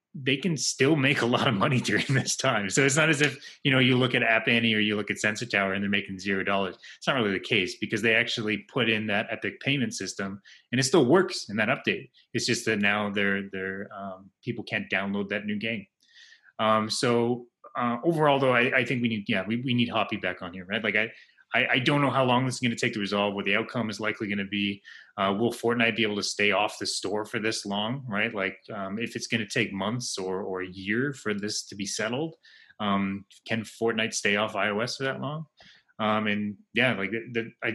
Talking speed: 245 wpm